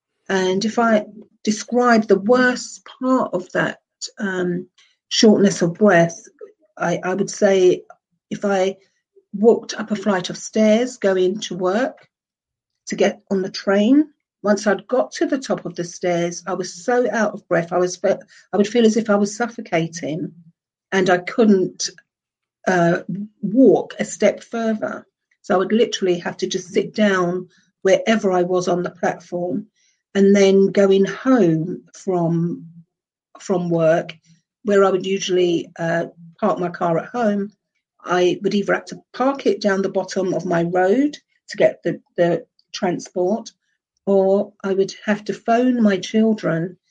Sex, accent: female, British